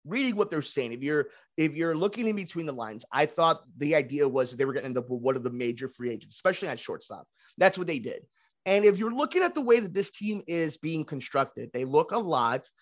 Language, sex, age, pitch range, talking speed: English, male, 30-49, 145-180 Hz, 260 wpm